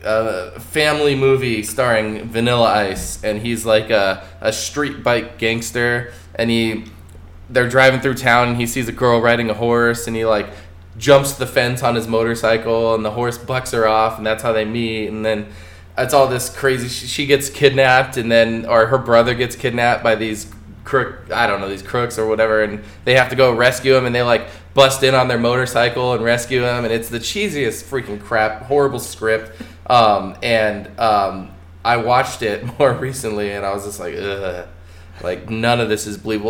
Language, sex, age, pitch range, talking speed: English, male, 20-39, 100-125 Hz, 200 wpm